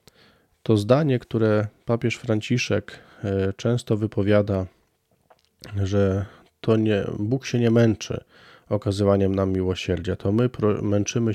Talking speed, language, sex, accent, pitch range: 105 wpm, Polish, male, native, 100-115 Hz